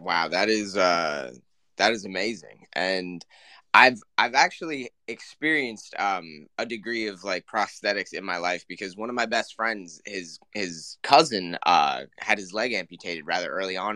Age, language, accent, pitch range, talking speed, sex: 20-39, English, American, 95-125 Hz, 165 wpm, male